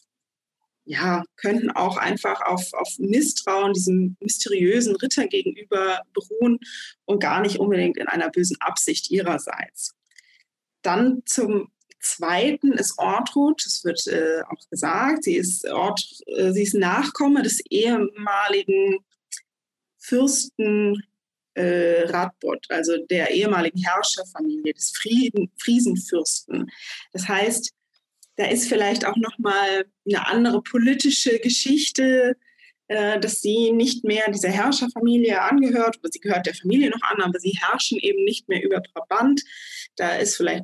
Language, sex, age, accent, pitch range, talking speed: German, female, 20-39, German, 185-255 Hz, 125 wpm